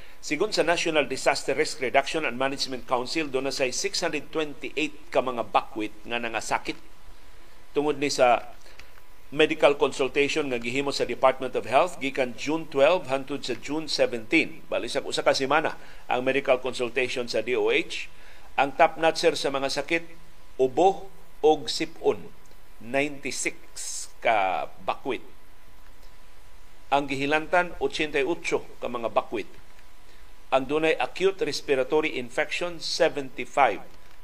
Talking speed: 115 wpm